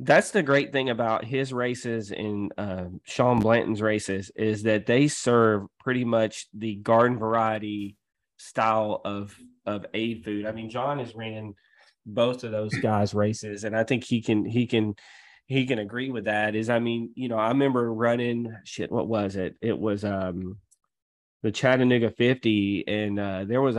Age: 20-39